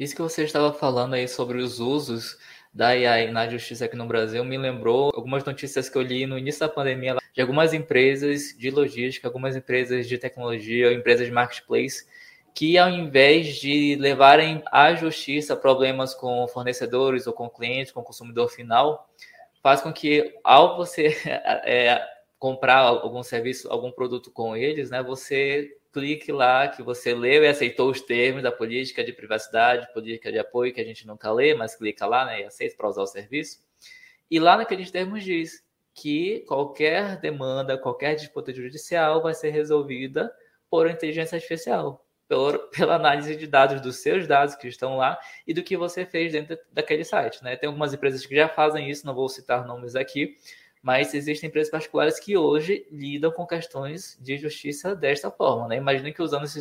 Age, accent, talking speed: 20-39, Brazilian, 175 wpm